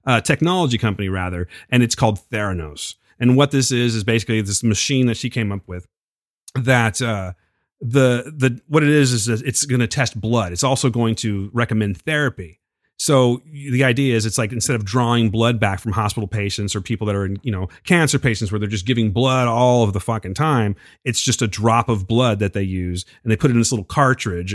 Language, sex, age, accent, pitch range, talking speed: English, male, 30-49, American, 105-130 Hz, 220 wpm